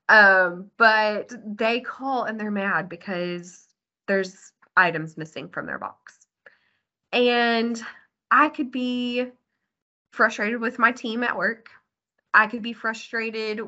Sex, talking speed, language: female, 125 wpm, English